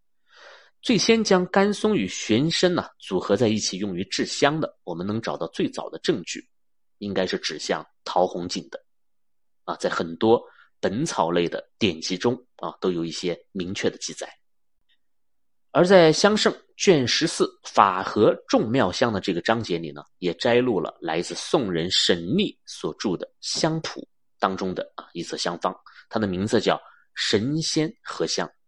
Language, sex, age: Chinese, male, 30-49